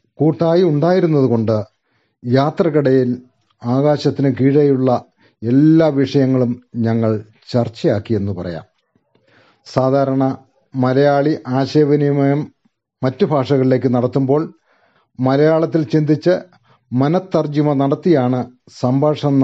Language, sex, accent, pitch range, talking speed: Malayalam, male, native, 120-150 Hz, 65 wpm